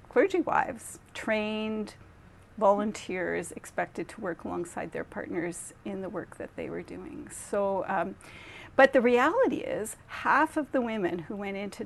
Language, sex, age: English, female, 40-59